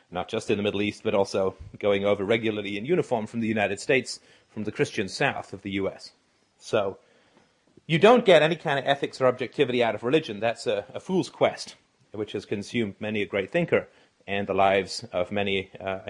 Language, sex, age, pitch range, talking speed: English, male, 30-49, 110-150 Hz, 205 wpm